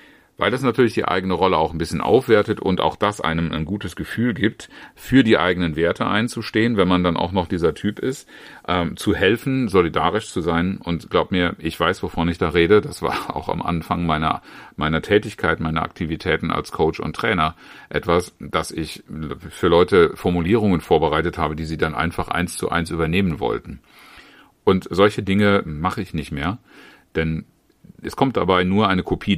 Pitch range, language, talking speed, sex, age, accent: 85-105 Hz, German, 185 wpm, male, 40-59, German